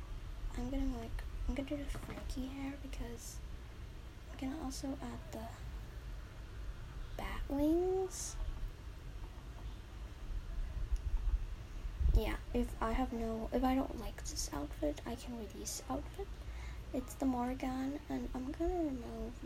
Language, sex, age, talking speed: English, female, 10-29, 120 wpm